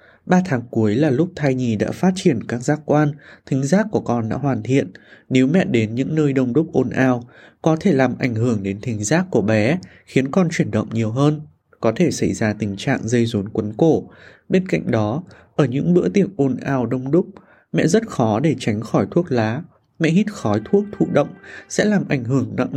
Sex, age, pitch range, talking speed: male, 20-39, 120-165 Hz, 225 wpm